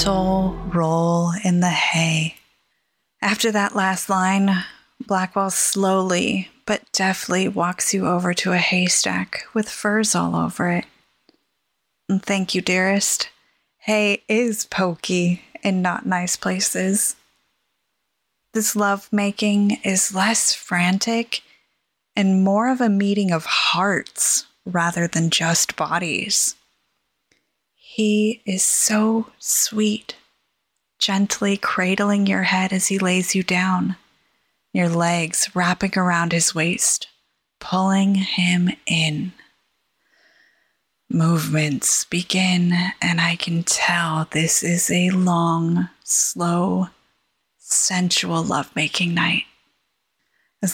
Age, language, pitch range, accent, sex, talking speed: 20-39, English, 175-200 Hz, American, female, 105 wpm